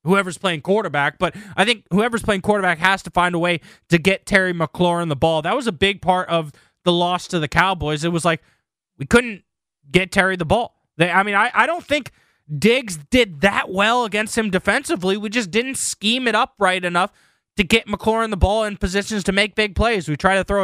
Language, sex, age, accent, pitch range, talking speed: English, male, 20-39, American, 165-200 Hz, 225 wpm